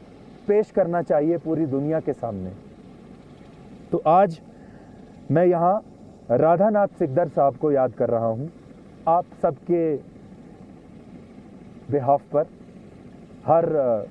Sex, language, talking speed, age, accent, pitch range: male, English, 100 wpm, 30-49, Indian, 150-200 Hz